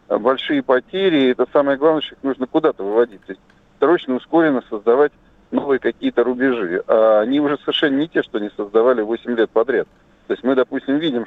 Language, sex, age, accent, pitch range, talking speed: Russian, male, 50-69, native, 120-155 Hz, 175 wpm